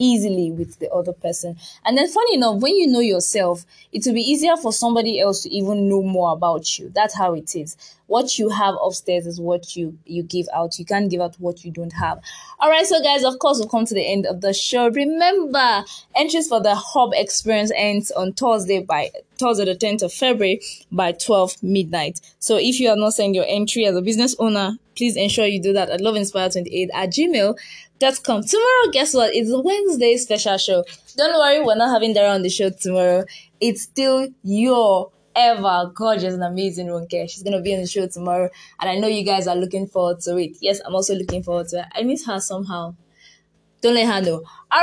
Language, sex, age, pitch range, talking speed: English, female, 20-39, 185-255 Hz, 220 wpm